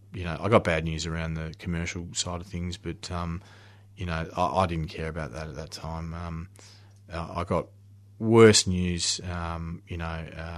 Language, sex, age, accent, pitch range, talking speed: English, male, 30-49, Australian, 80-100 Hz, 195 wpm